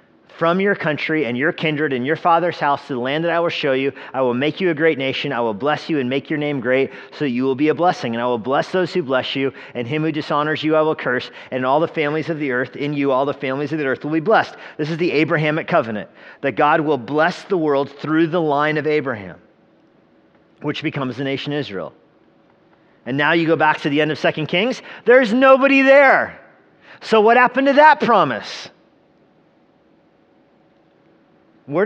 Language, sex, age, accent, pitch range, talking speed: English, male, 40-59, American, 135-170 Hz, 220 wpm